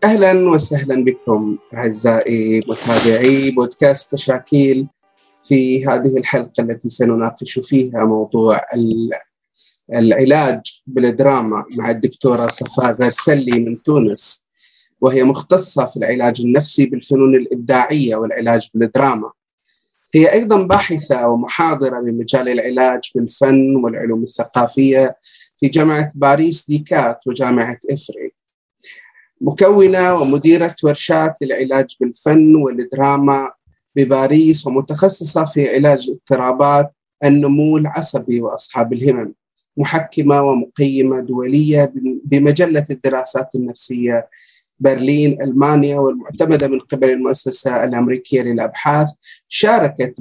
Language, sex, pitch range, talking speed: Arabic, male, 125-150 Hz, 90 wpm